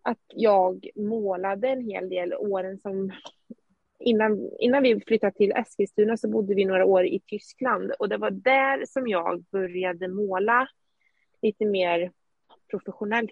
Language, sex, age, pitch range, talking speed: Swedish, female, 20-39, 190-235 Hz, 145 wpm